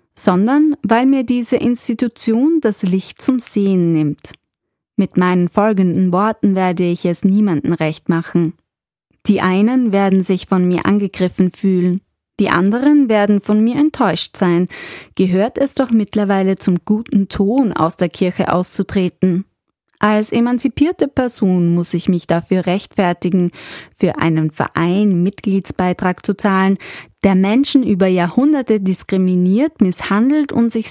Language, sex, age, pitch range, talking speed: German, female, 20-39, 180-230 Hz, 130 wpm